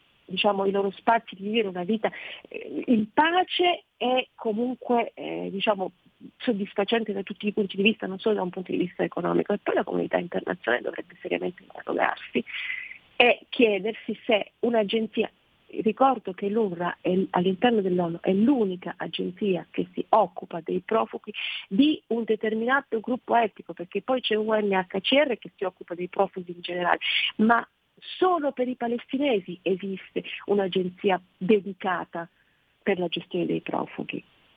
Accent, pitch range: native, 190-245 Hz